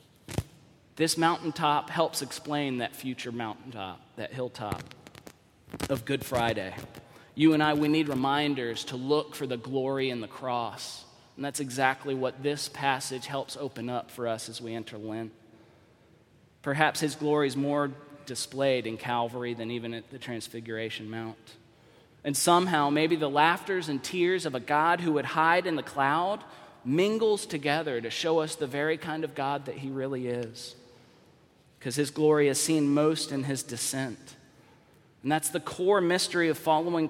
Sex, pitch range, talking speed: male, 115-150 Hz, 165 wpm